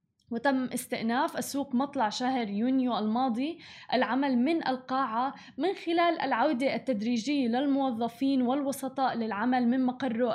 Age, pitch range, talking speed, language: 20-39, 230-275 Hz, 110 wpm, Arabic